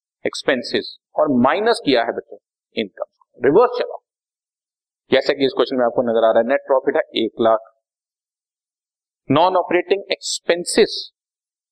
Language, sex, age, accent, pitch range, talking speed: Hindi, male, 40-59, native, 130-205 Hz, 120 wpm